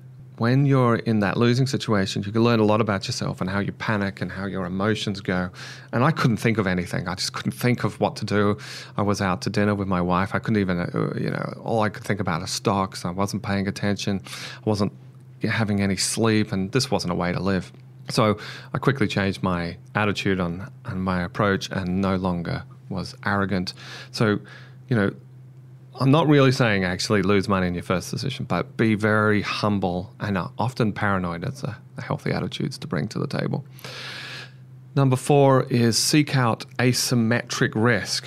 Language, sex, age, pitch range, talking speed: English, male, 30-49, 100-130 Hz, 195 wpm